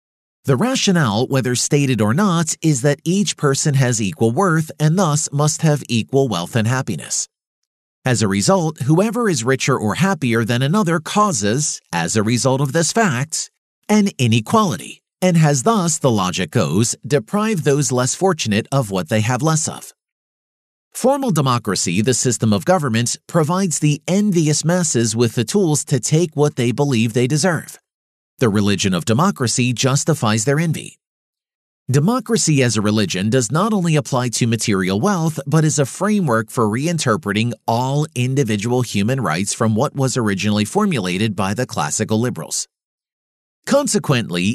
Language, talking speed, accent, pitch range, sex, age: English, 155 wpm, American, 115-170 Hz, male, 40-59